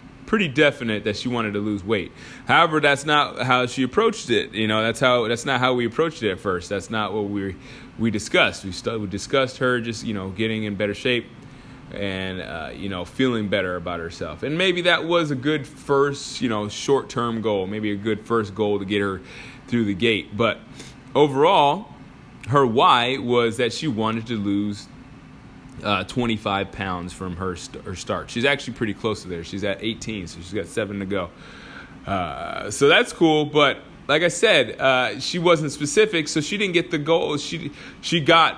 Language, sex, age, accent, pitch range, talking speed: English, male, 20-39, American, 105-140 Hz, 200 wpm